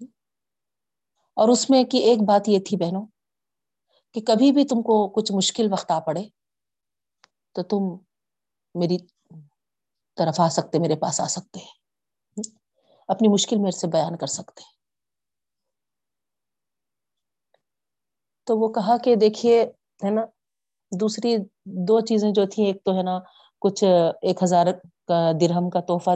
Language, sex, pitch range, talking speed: Urdu, female, 175-220 Hz, 135 wpm